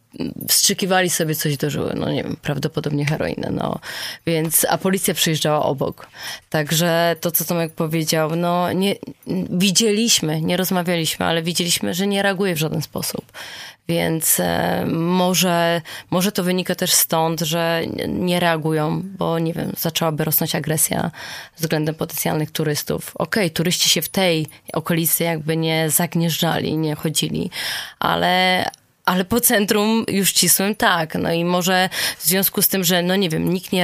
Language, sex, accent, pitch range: Polish, female, native, 160-185 Hz